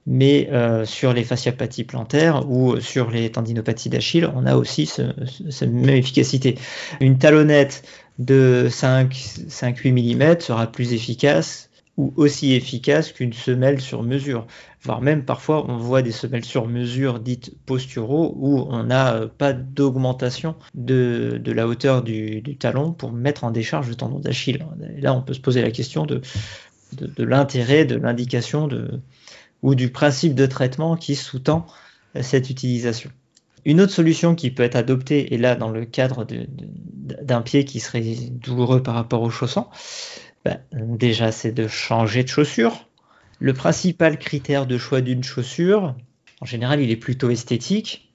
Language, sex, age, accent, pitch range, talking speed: French, male, 40-59, French, 120-140 Hz, 160 wpm